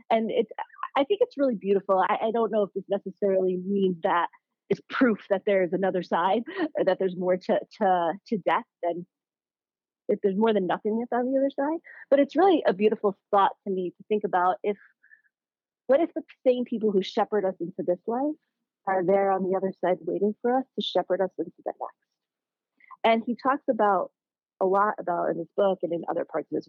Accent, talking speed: American, 210 wpm